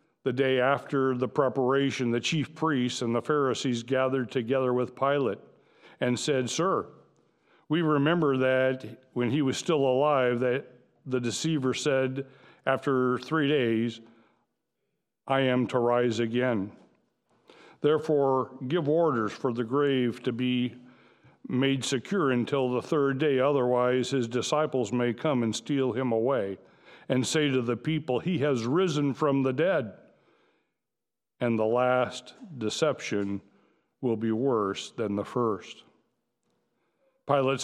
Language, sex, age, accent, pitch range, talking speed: English, male, 60-79, American, 120-135 Hz, 130 wpm